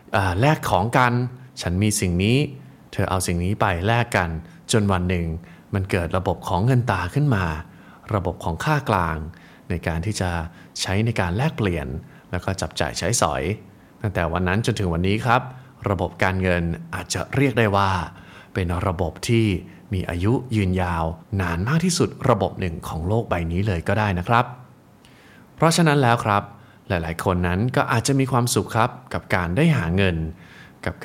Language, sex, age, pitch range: Thai, male, 20-39, 90-120 Hz